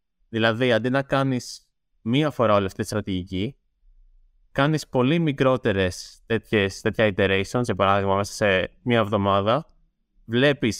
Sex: male